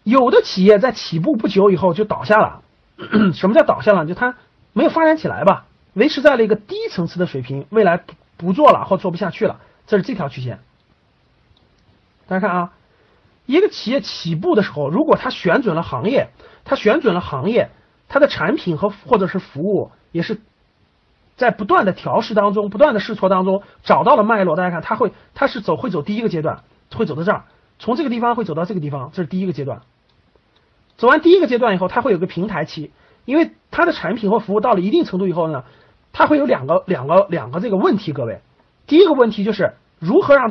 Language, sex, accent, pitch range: Chinese, male, native, 165-235 Hz